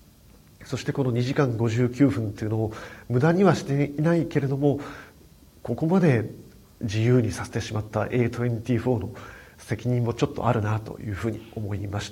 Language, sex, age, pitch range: Japanese, male, 40-59, 105-125 Hz